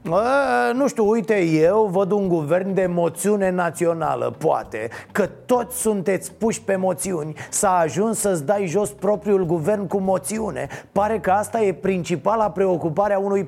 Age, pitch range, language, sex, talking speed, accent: 30-49, 175-230 Hz, Romanian, male, 155 wpm, native